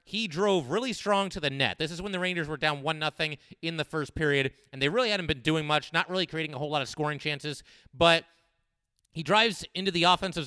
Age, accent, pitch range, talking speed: 30-49, American, 140-180 Hz, 240 wpm